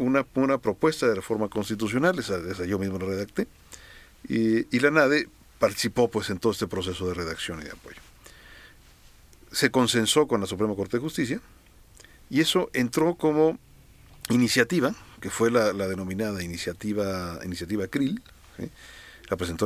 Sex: male